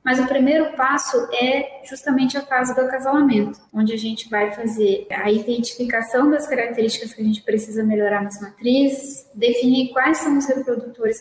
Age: 10-29